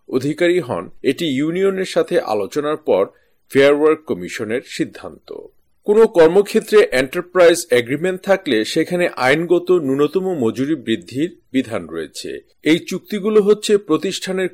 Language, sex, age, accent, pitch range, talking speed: Bengali, male, 50-69, native, 130-195 Hz, 105 wpm